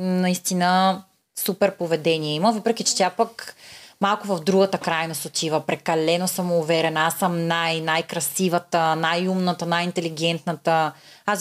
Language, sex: Bulgarian, female